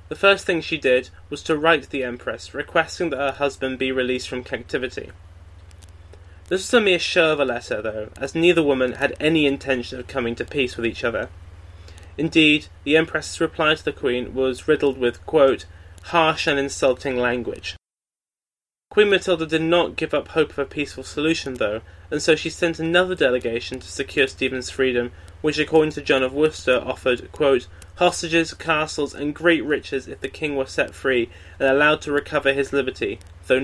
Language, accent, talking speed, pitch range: English, British, 185 wpm, 120-160 Hz